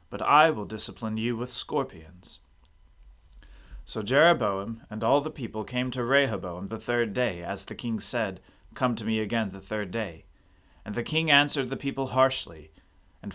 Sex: male